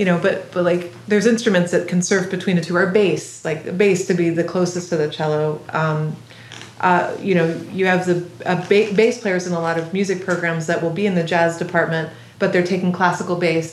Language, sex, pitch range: English, female, 160-185 Hz